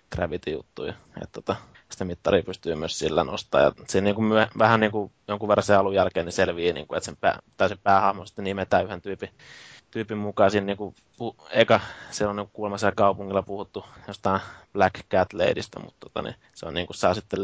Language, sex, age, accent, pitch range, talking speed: Finnish, male, 20-39, native, 95-105 Hz, 205 wpm